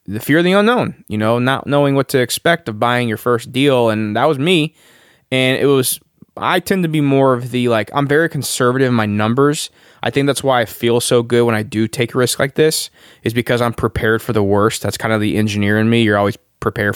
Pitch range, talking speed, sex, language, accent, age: 115-145 Hz, 250 wpm, male, English, American, 20-39